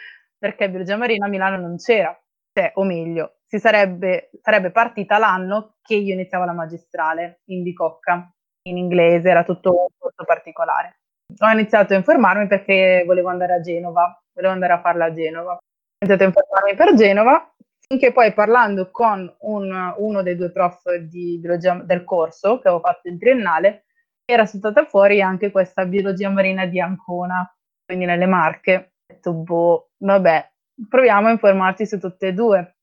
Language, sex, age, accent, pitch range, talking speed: Italian, female, 20-39, native, 175-200 Hz, 165 wpm